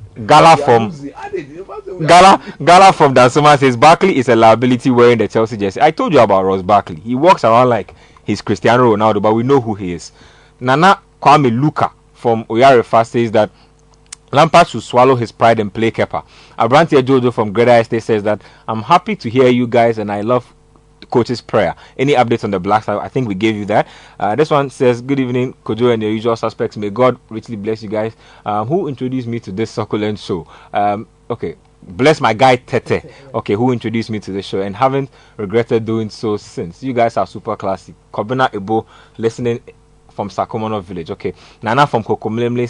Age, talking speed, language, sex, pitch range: 30-49, 195 wpm, English, male, 105-130 Hz